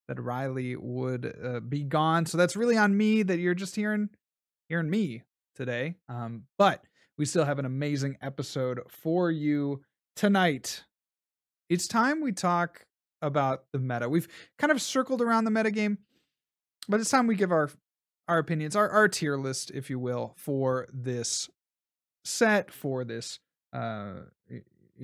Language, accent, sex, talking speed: English, American, male, 155 wpm